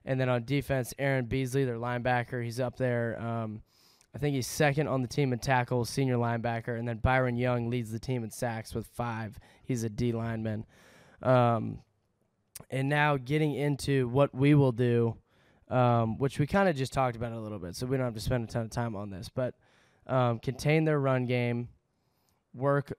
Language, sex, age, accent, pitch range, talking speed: English, male, 10-29, American, 115-135 Hz, 200 wpm